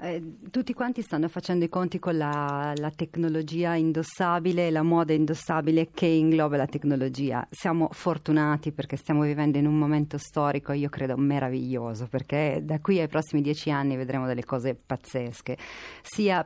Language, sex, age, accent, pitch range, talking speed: Italian, female, 40-59, native, 140-160 Hz, 155 wpm